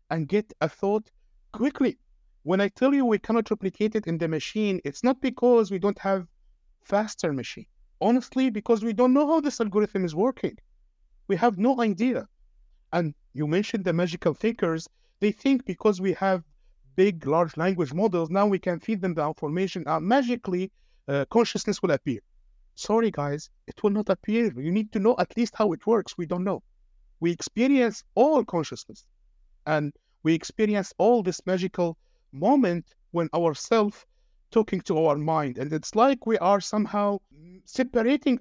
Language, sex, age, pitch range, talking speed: English, male, 50-69, 160-220 Hz, 170 wpm